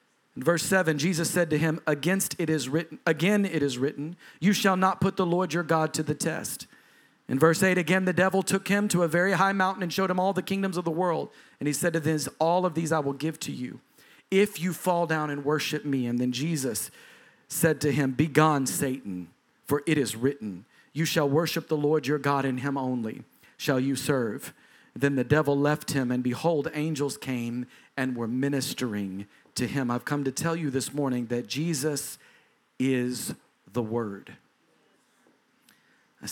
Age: 40-59